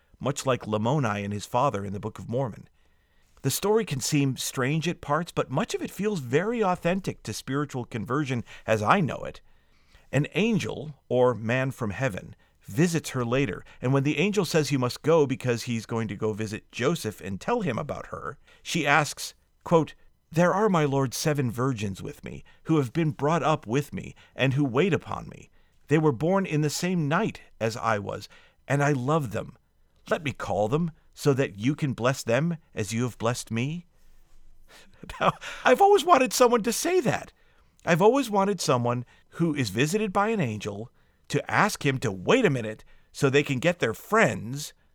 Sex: male